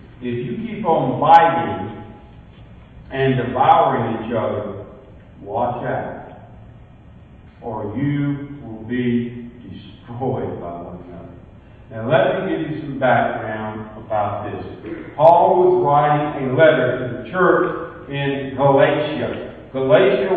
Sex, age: male, 50-69